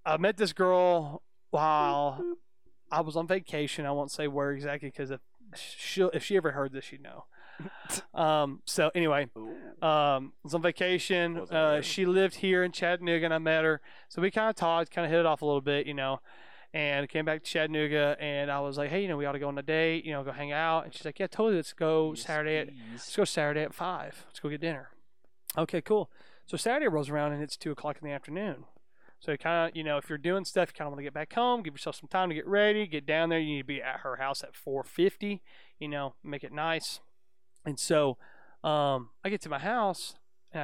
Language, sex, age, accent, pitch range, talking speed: English, male, 20-39, American, 140-170 Hz, 240 wpm